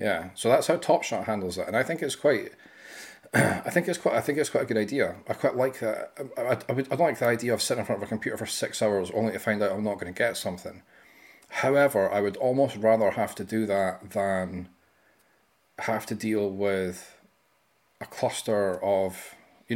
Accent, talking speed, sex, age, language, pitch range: British, 220 wpm, male, 30-49, English, 100-110 Hz